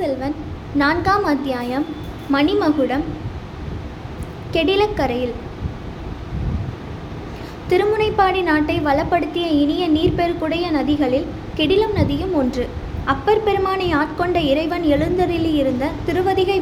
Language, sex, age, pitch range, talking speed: Tamil, female, 20-39, 295-365 Hz, 70 wpm